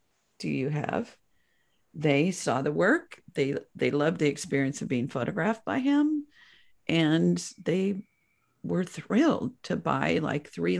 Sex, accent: female, American